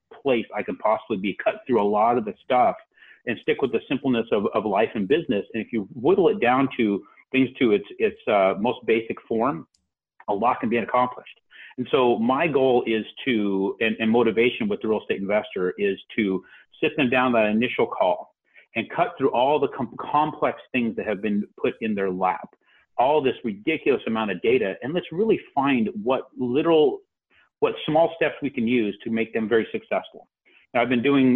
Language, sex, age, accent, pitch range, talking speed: English, male, 40-59, American, 105-140 Hz, 205 wpm